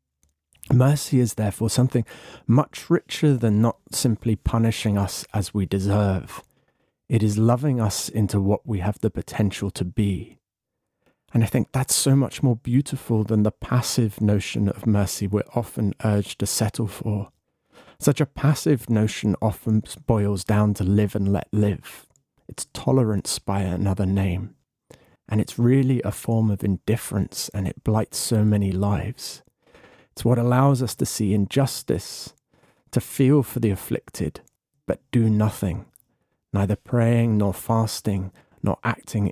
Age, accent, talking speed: 30-49, British, 150 wpm